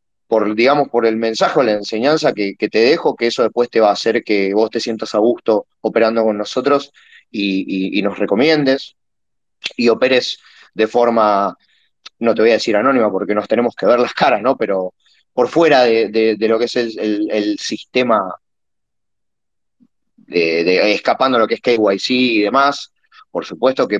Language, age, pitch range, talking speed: Spanish, 30-49, 100-125 Hz, 195 wpm